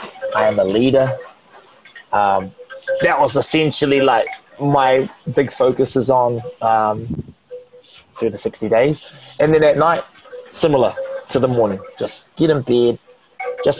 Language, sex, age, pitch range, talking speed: English, male, 20-39, 110-155 Hz, 140 wpm